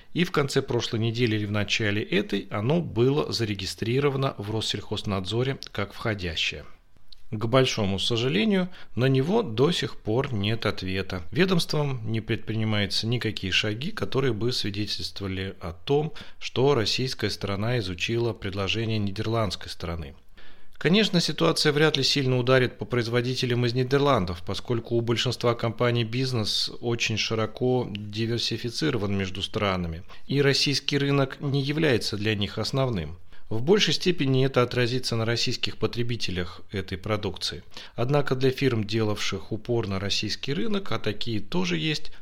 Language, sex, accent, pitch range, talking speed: Russian, male, native, 100-130 Hz, 130 wpm